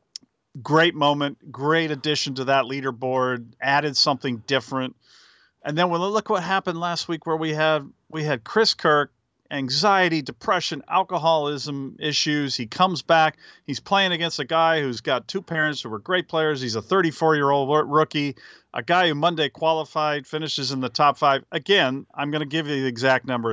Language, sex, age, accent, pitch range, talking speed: English, male, 40-59, American, 135-170 Hz, 180 wpm